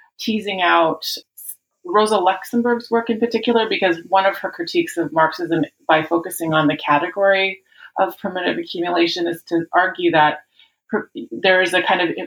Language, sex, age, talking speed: English, female, 30-49, 150 wpm